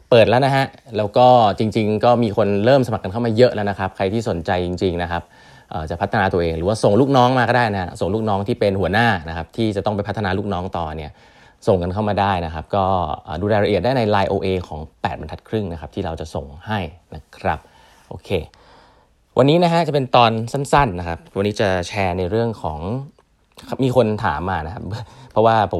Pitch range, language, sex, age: 95-120 Hz, Thai, male, 20-39